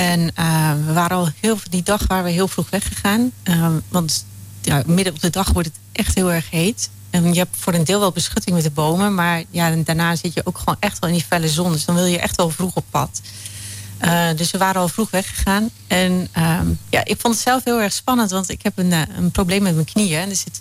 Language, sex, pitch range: Dutch, female, 160-200 Hz